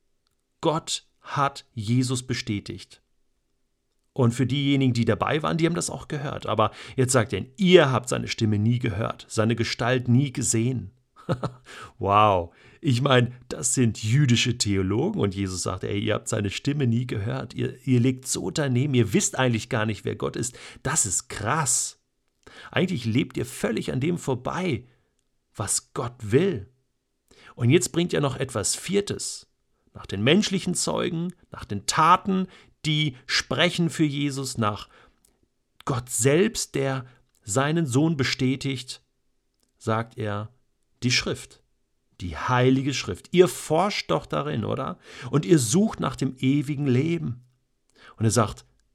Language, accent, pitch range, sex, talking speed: German, German, 115-140 Hz, male, 145 wpm